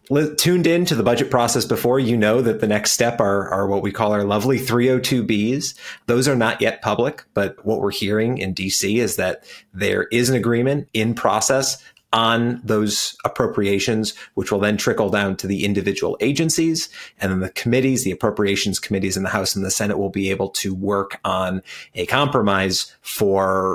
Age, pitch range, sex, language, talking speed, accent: 30-49, 100-125 Hz, male, English, 185 wpm, American